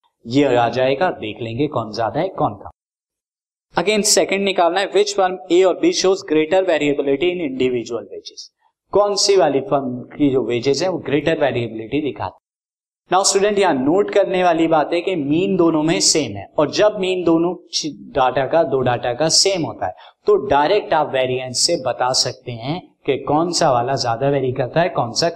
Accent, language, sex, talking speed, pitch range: native, Hindi, male, 190 wpm, 135-180 Hz